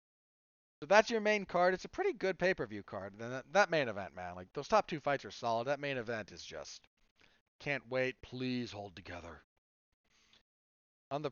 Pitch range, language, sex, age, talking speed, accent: 120-165 Hz, English, male, 40-59, 185 wpm, American